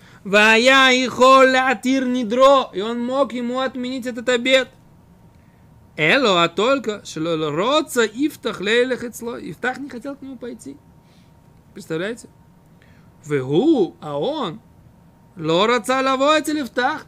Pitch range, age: 165-255 Hz, 20-39